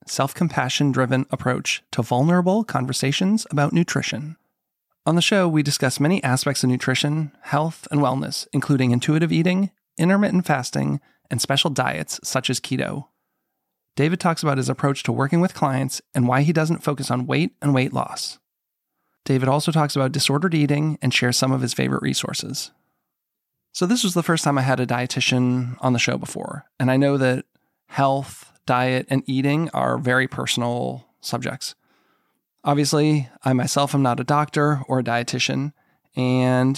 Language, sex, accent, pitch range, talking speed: English, male, American, 125-155 Hz, 160 wpm